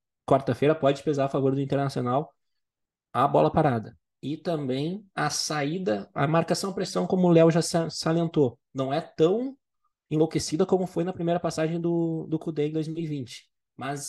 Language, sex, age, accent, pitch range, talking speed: Portuguese, male, 20-39, Brazilian, 135-165 Hz, 160 wpm